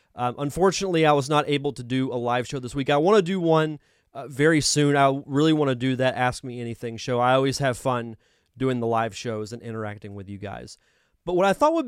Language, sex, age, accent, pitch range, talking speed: English, male, 30-49, American, 125-155 Hz, 250 wpm